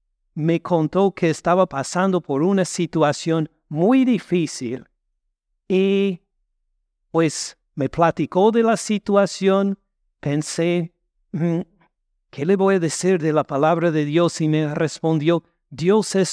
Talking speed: 120 wpm